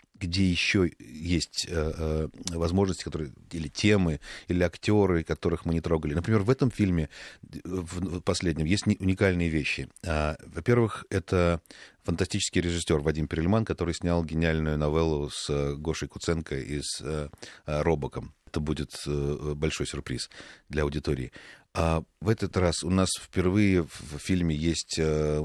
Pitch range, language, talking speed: 75-95 Hz, Russian, 140 wpm